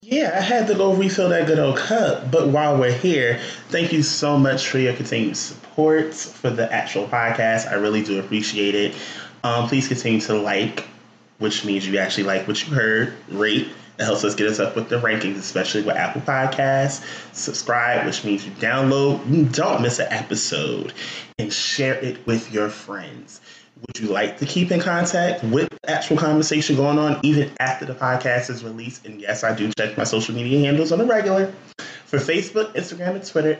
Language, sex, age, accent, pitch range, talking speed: English, male, 20-39, American, 110-155 Hz, 195 wpm